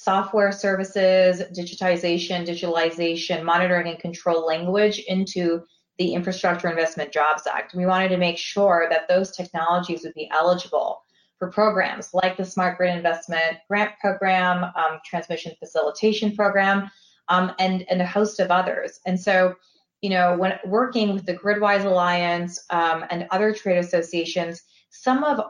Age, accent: 20-39, American